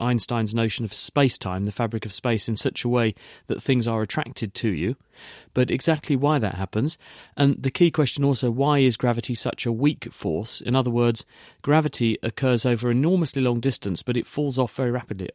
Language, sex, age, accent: English, male, 40-59, British